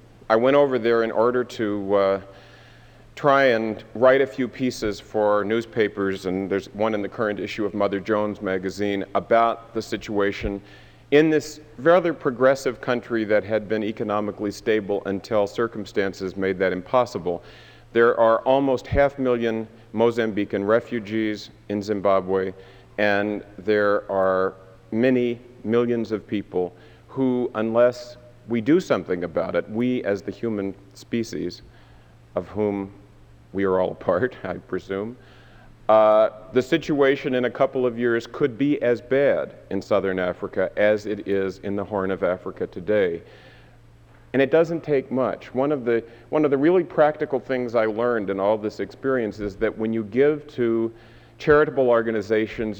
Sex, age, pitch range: male, 50-69, 100-120 Hz